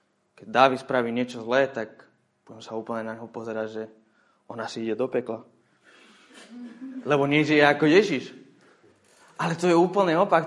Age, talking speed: 20-39, 155 wpm